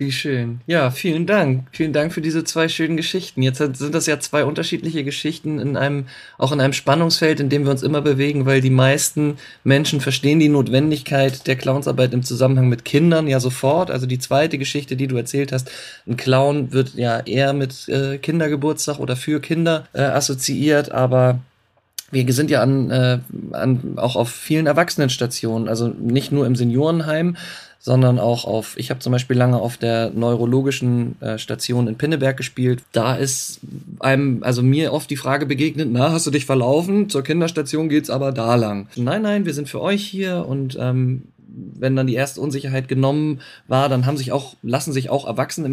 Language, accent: German, German